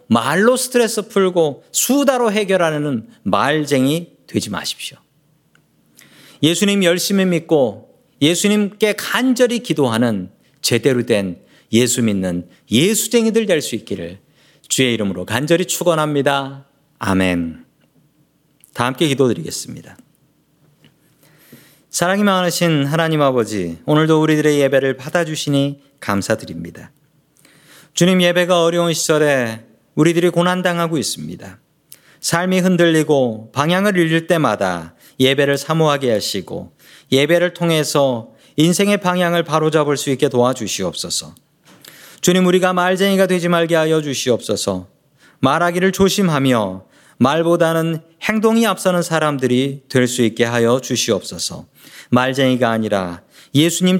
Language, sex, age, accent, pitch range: Korean, male, 40-59, native, 125-175 Hz